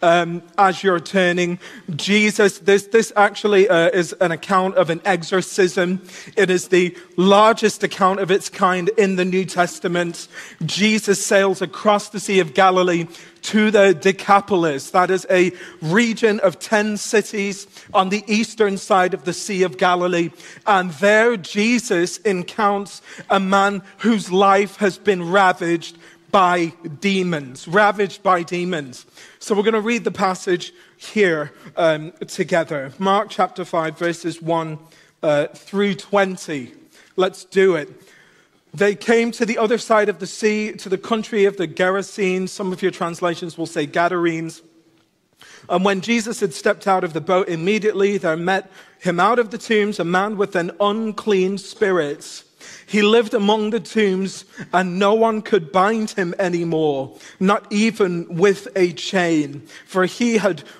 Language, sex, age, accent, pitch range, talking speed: English, male, 40-59, British, 175-205 Hz, 150 wpm